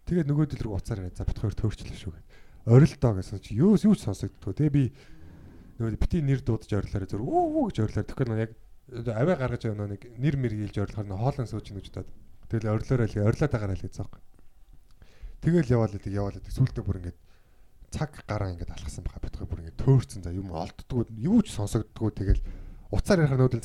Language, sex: Korean, male